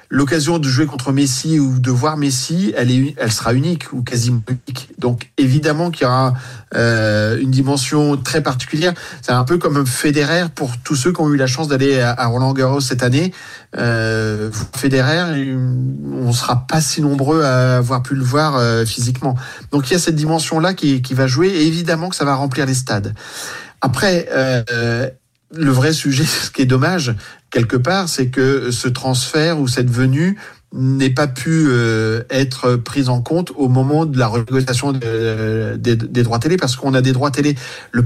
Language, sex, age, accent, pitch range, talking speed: French, male, 50-69, French, 125-150 Hz, 195 wpm